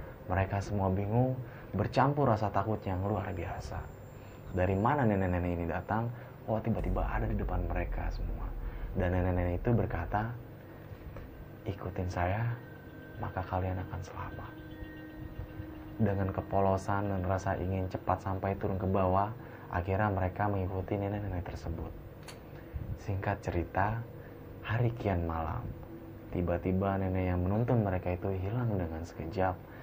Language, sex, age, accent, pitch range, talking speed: Indonesian, male, 20-39, native, 90-105 Hz, 120 wpm